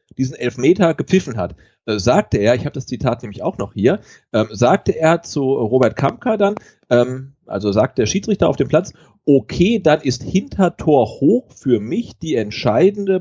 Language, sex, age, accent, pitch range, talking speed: German, male, 40-59, German, 115-175 Hz, 180 wpm